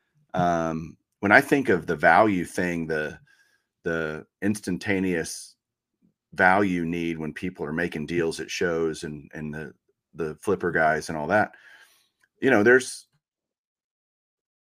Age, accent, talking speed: 40-59, American, 130 wpm